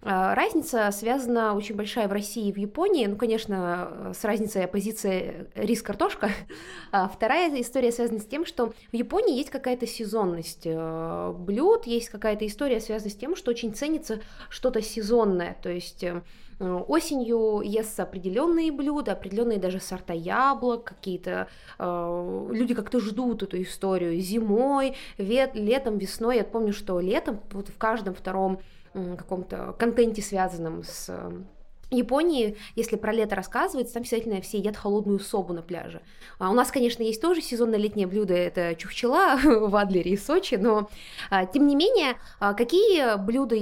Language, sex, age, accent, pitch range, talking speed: Russian, female, 20-39, native, 190-240 Hz, 145 wpm